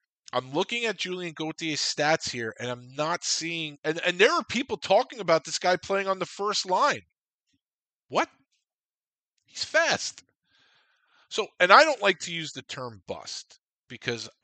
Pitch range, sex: 115-155 Hz, male